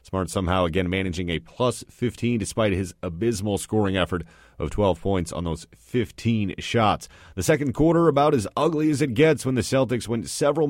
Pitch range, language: 100-130 Hz, English